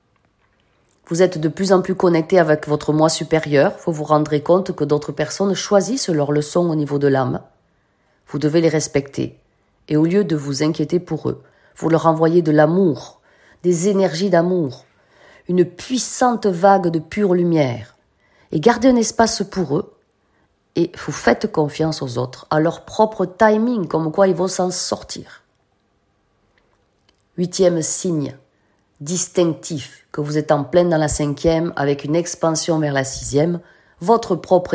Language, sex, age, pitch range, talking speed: French, female, 40-59, 140-185 Hz, 160 wpm